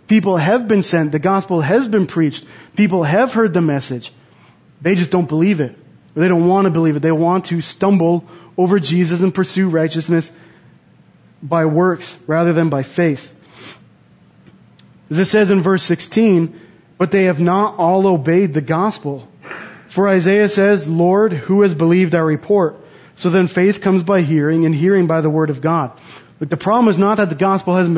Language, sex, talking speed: English, male, 180 wpm